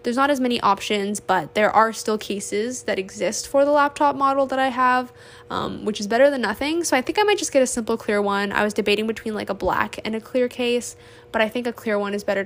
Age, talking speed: 10-29, 265 wpm